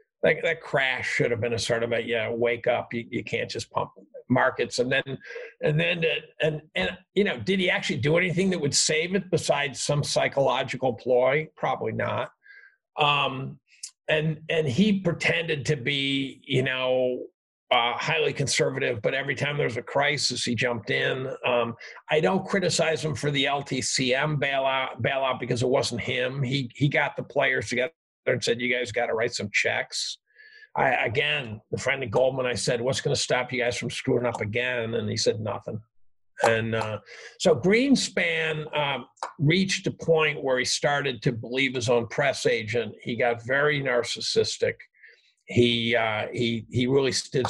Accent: American